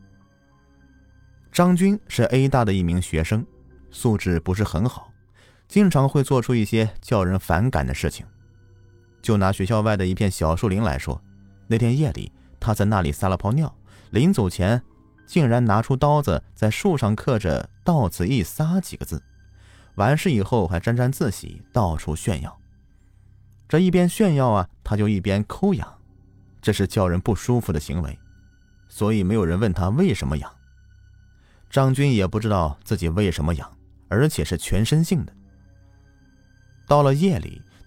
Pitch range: 90-120 Hz